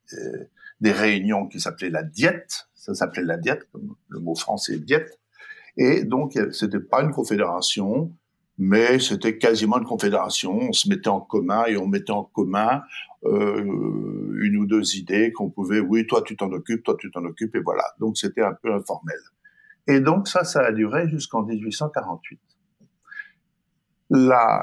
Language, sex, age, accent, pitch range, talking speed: French, male, 50-69, French, 110-175 Hz, 165 wpm